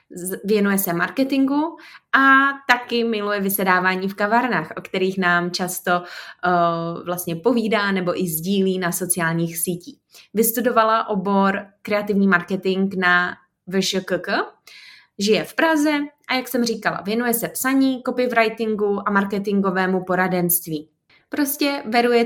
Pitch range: 180-230 Hz